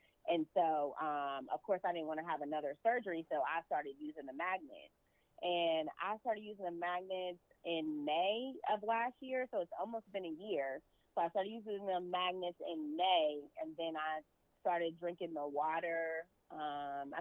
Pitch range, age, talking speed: 160-220 Hz, 30-49, 180 wpm